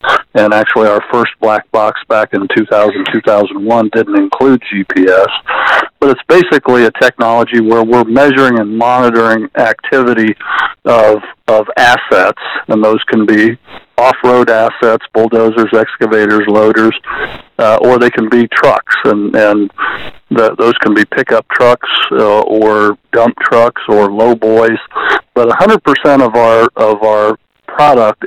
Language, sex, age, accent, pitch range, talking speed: English, male, 50-69, American, 110-120 Hz, 140 wpm